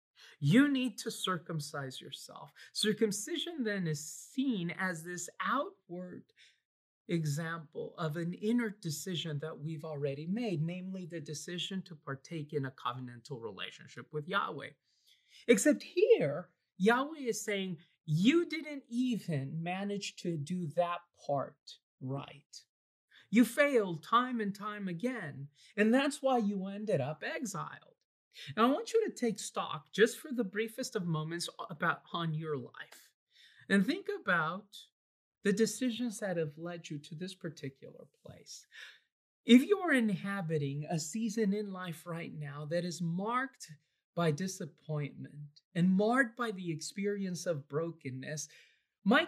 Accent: American